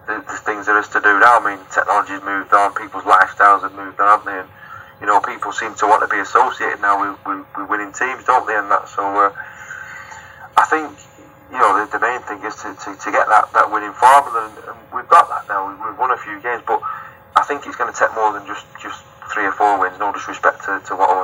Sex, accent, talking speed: male, British, 255 wpm